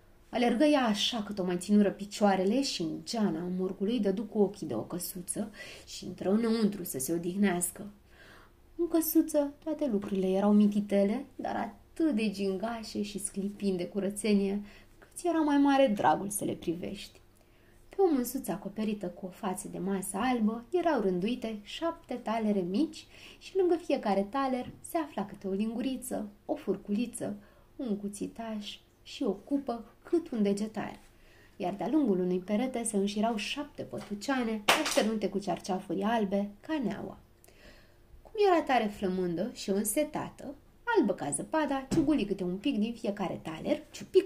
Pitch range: 195-270 Hz